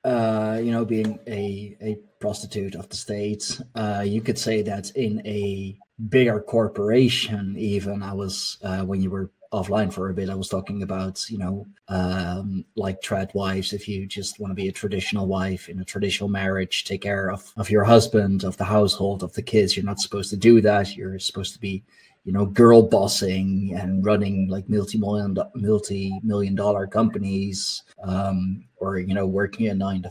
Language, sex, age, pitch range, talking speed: English, male, 20-39, 95-110 Hz, 185 wpm